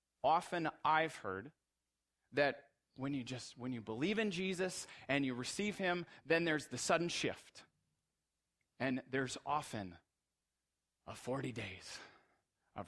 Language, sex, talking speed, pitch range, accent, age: English, male, 130 wpm, 105-150 Hz, American, 30-49